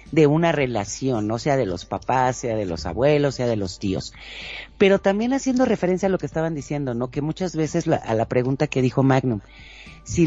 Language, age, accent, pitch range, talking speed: Spanish, 40-59, Mexican, 125-170 Hz, 215 wpm